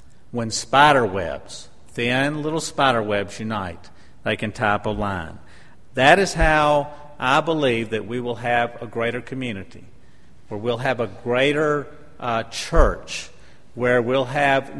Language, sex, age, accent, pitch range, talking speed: English, male, 50-69, American, 115-150 Hz, 140 wpm